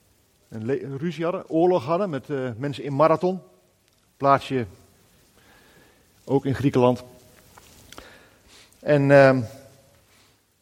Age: 50-69